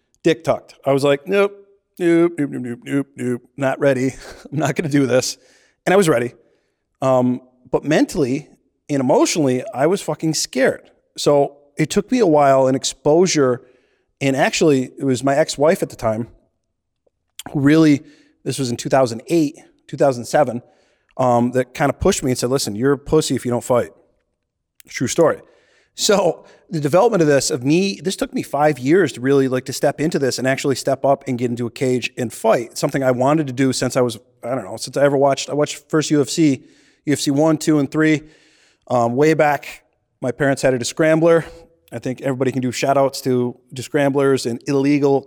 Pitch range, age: 130-155 Hz, 30-49